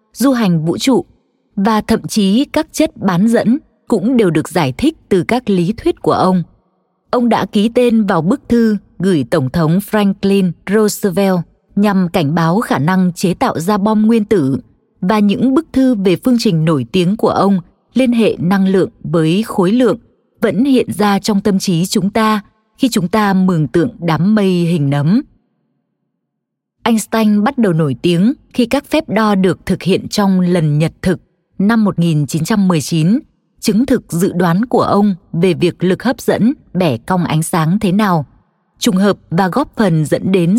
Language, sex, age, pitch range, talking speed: Vietnamese, female, 20-39, 175-225 Hz, 180 wpm